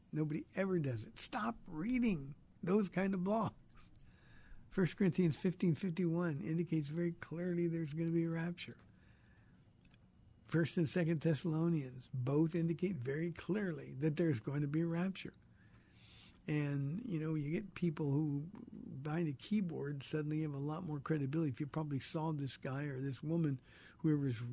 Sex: male